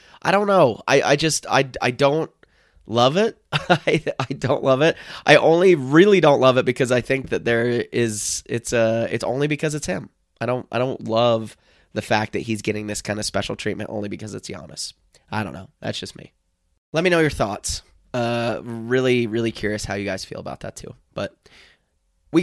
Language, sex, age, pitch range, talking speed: English, male, 20-39, 110-140 Hz, 210 wpm